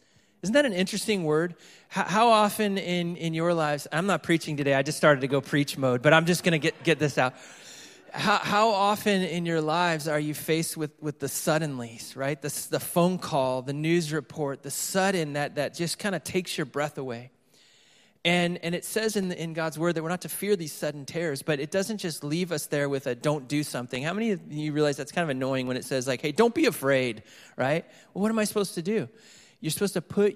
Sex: male